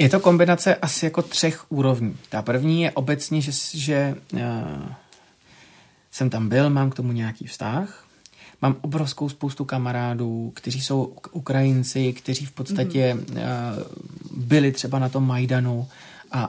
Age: 30-49